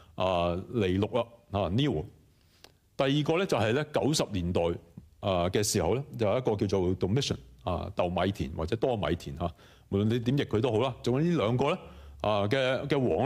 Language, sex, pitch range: Chinese, male, 95-130 Hz